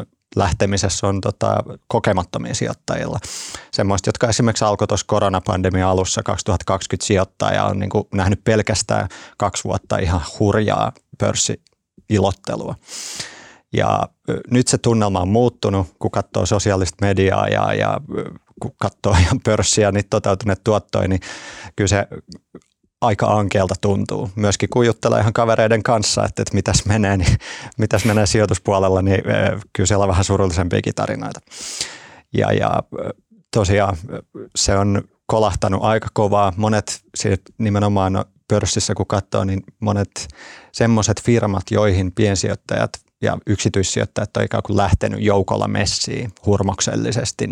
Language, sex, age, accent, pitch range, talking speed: Finnish, male, 30-49, native, 100-110 Hz, 115 wpm